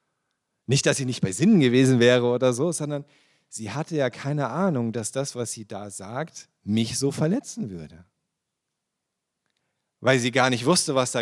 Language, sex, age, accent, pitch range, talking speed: German, male, 40-59, German, 115-150 Hz, 175 wpm